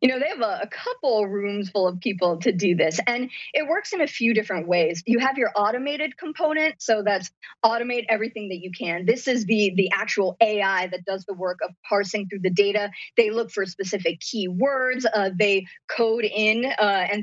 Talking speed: 210 wpm